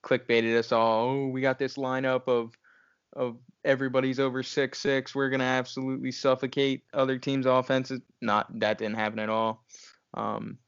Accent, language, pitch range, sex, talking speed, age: American, English, 110-130 Hz, male, 165 wpm, 10-29